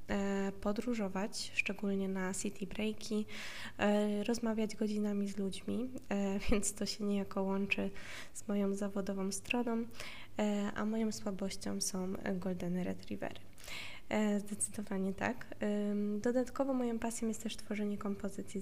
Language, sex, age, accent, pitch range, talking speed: Polish, female, 20-39, native, 190-215 Hz, 105 wpm